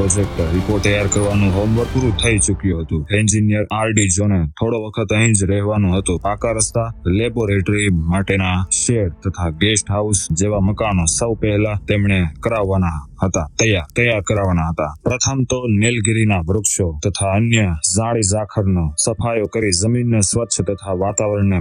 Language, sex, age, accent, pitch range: Hindi, male, 20-39, native, 95-110 Hz